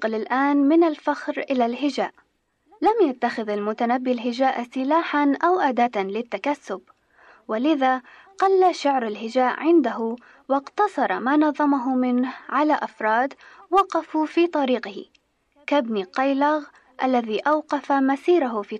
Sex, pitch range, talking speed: female, 235-300 Hz, 105 wpm